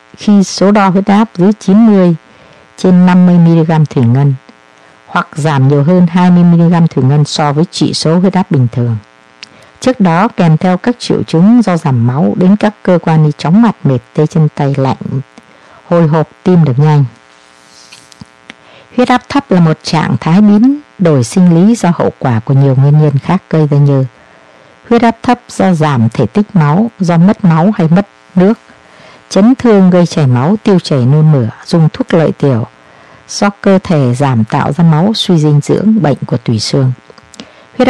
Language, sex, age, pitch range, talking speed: Vietnamese, female, 60-79, 130-190 Hz, 185 wpm